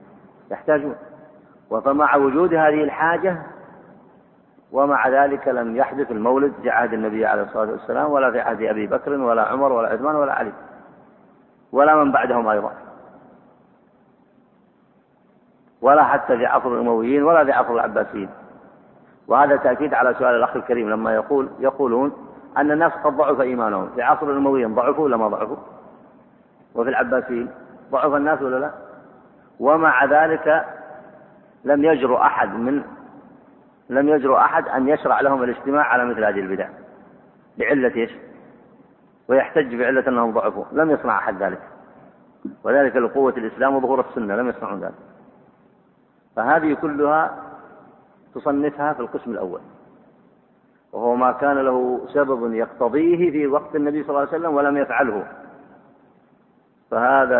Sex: male